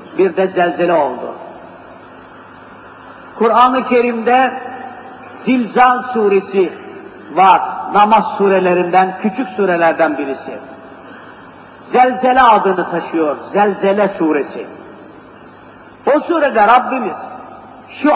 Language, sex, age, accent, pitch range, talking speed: Turkish, male, 50-69, native, 195-265 Hz, 75 wpm